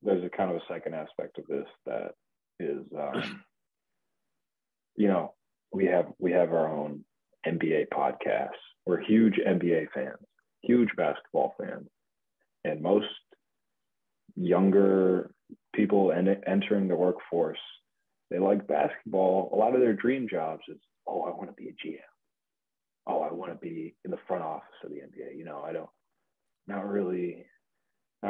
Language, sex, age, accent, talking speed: English, male, 30-49, American, 155 wpm